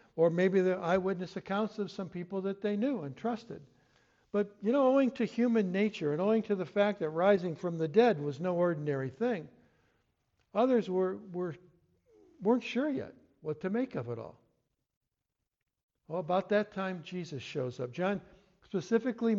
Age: 60-79